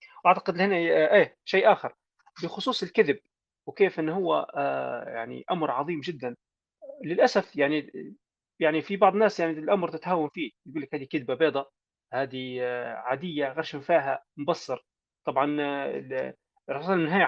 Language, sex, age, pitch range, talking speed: Arabic, male, 30-49, 140-190 Hz, 125 wpm